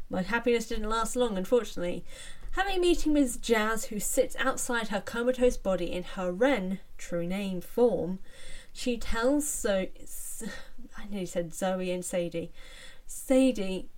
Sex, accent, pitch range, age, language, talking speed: female, British, 175-250 Hz, 10-29, English, 140 wpm